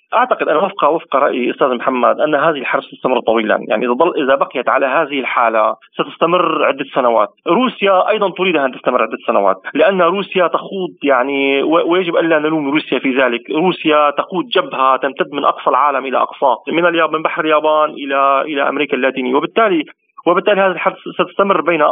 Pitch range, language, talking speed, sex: 140-175 Hz, Arabic, 180 wpm, male